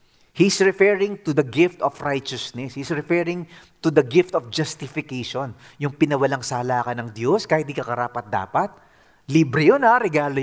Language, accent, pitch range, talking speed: English, Filipino, 135-180 Hz, 160 wpm